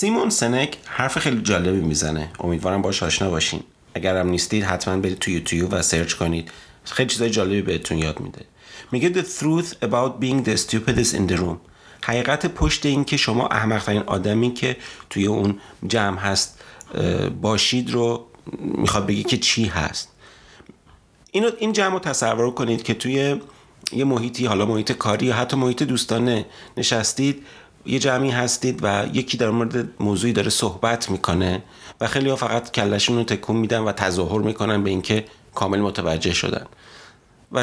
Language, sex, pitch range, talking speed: Persian, male, 95-125 Hz, 160 wpm